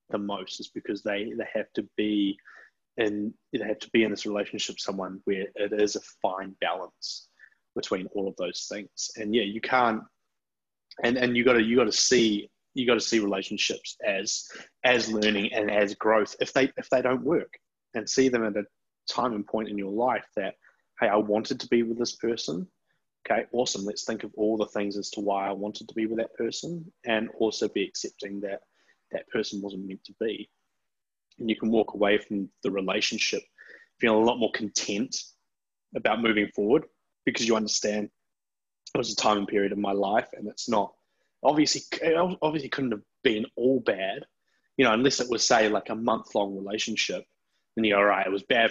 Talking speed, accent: 200 wpm, Australian